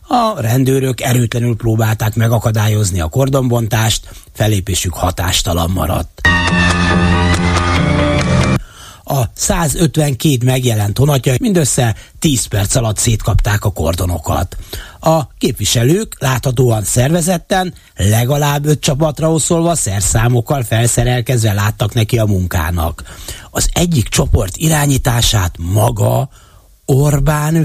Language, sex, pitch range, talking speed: Hungarian, male, 95-140 Hz, 90 wpm